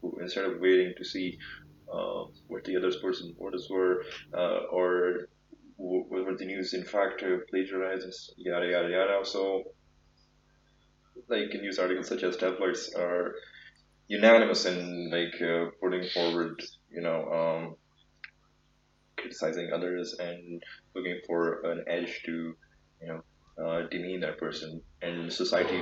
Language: Urdu